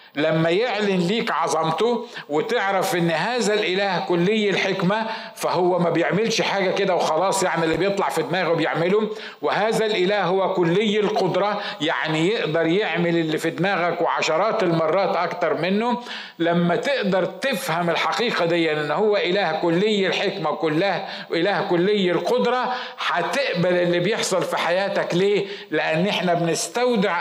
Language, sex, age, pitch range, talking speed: Arabic, male, 50-69, 160-205 Hz, 135 wpm